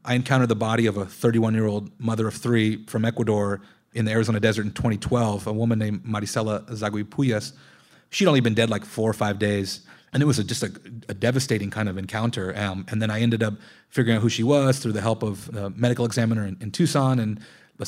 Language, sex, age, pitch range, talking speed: English, male, 30-49, 105-120 Hz, 220 wpm